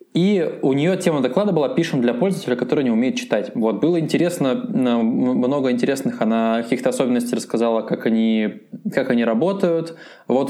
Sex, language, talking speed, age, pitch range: male, Russian, 150 wpm, 20-39, 120-195 Hz